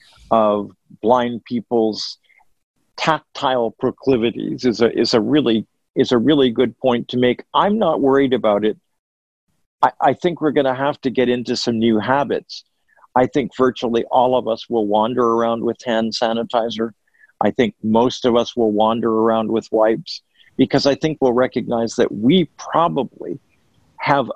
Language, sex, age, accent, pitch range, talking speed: English, male, 50-69, American, 115-130 Hz, 170 wpm